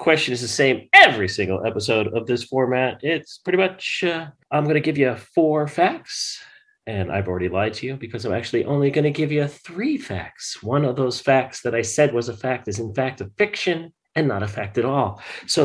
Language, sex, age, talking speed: English, male, 40-59, 225 wpm